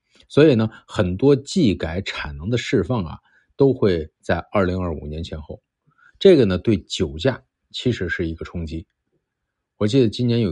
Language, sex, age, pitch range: Chinese, male, 50-69, 85-115 Hz